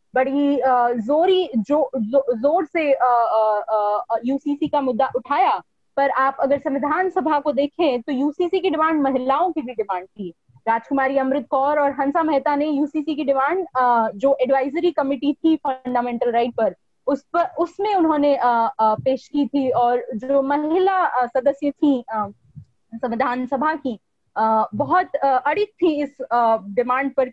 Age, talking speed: 20-39, 140 wpm